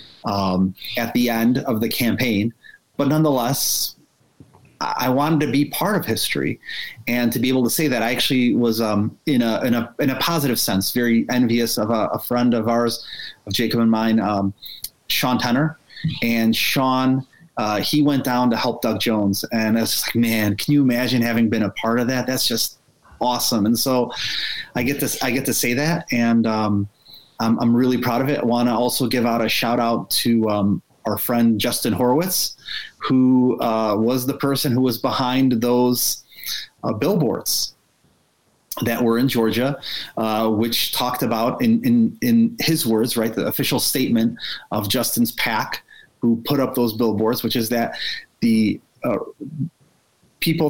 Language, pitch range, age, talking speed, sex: English, 115-135 Hz, 30-49, 180 wpm, male